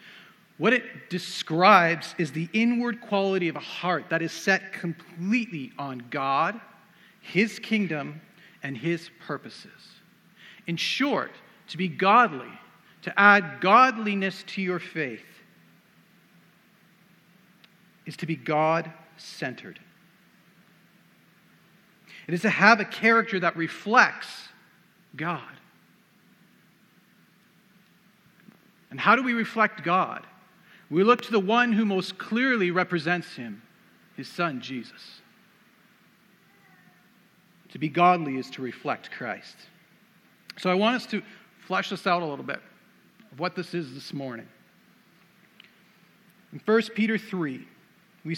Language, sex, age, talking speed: English, male, 40-59, 115 wpm